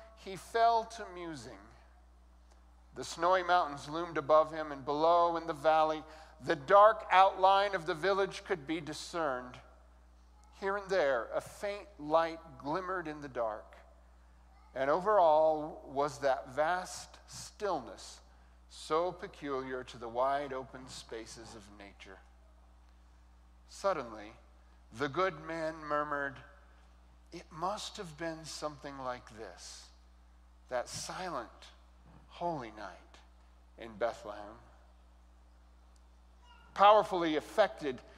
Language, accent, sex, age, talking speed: English, American, male, 50-69, 110 wpm